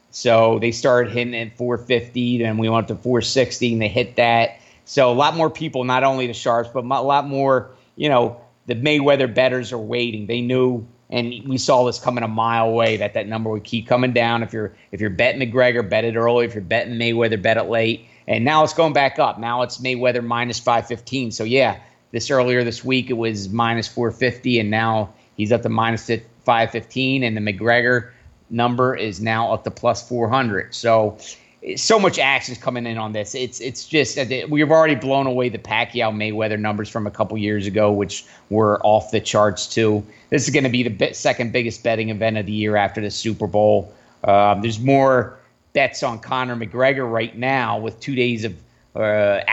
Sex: male